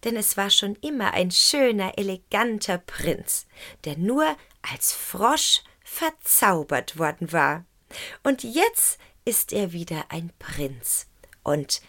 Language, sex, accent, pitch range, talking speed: German, female, German, 175-240 Hz, 120 wpm